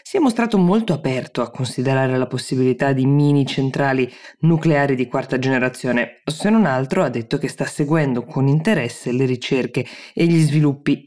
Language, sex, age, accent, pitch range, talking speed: Italian, female, 20-39, native, 125-145 Hz, 170 wpm